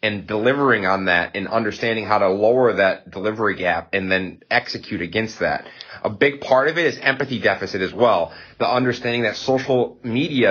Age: 30-49